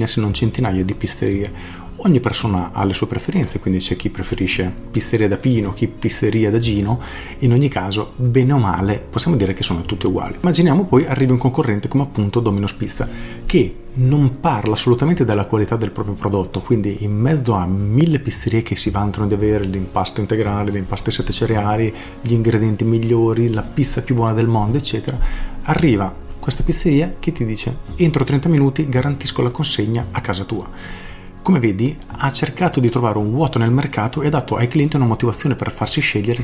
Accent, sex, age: native, male, 30-49